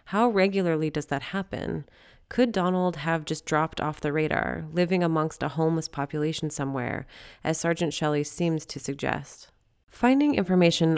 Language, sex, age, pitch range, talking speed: English, female, 30-49, 150-180 Hz, 150 wpm